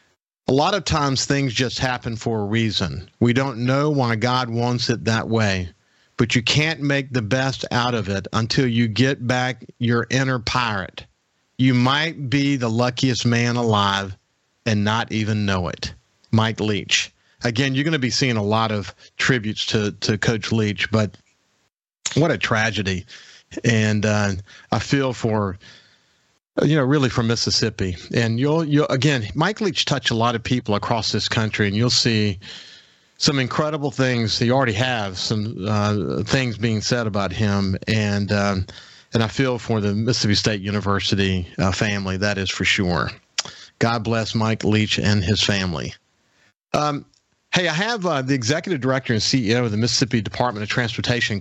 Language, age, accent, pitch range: English, 50-69, American, 105-130 Hz